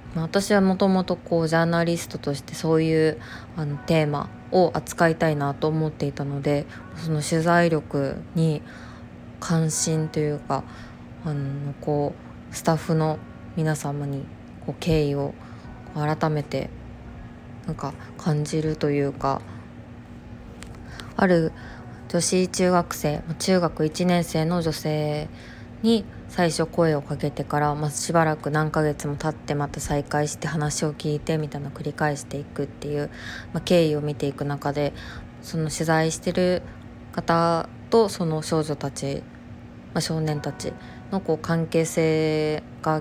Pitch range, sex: 145-165 Hz, female